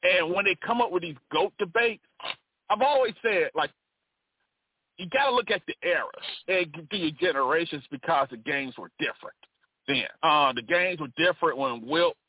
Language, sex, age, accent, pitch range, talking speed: English, male, 40-59, American, 165-275 Hz, 175 wpm